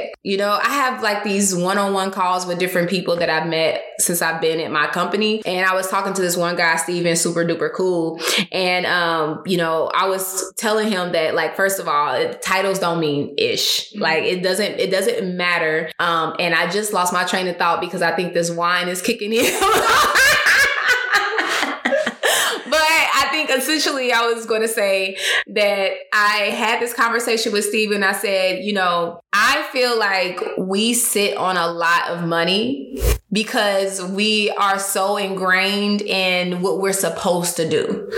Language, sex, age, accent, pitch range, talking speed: English, female, 20-39, American, 175-220 Hz, 175 wpm